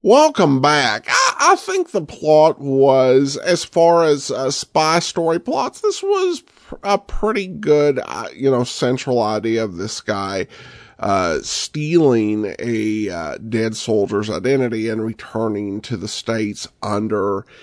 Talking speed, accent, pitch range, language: 145 wpm, American, 115-170 Hz, English